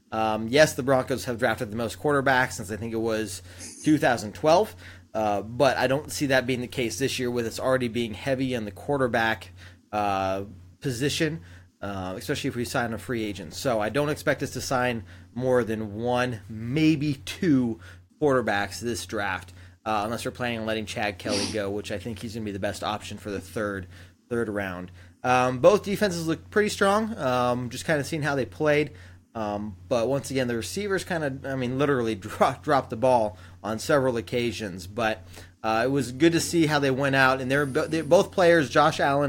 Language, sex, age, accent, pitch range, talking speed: English, male, 30-49, American, 105-135 Hz, 205 wpm